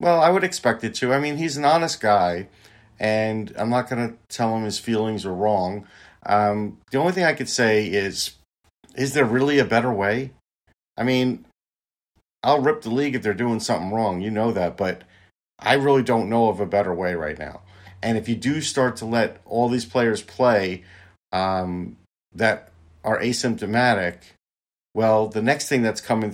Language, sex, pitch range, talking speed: English, male, 105-125 Hz, 190 wpm